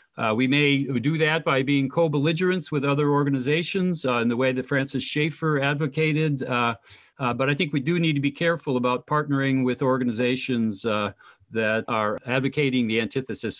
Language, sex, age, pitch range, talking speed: English, male, 50-69, 125-150 Hz, 175 wpm